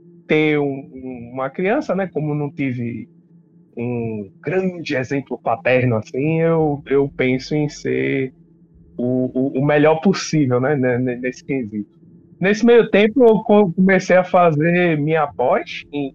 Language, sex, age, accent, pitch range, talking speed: Portuguese, male, 20-39, Brazilian, 130-180 Hz, 135 wpm